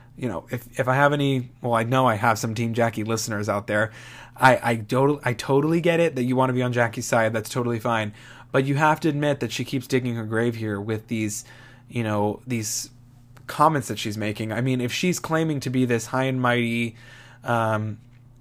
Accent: American